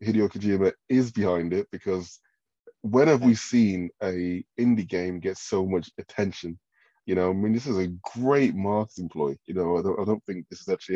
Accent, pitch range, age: British, 85-105 Hz, 20-39